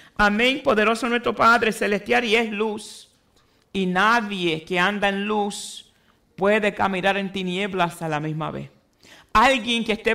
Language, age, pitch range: Spanish, 50-69, 200-245 Hz